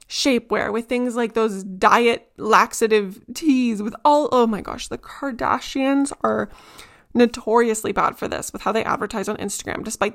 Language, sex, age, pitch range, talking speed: English, female, 20-39, 205-255 Hz, 160 wpm